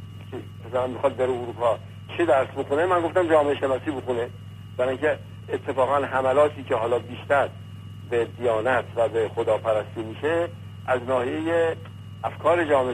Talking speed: 125 wpm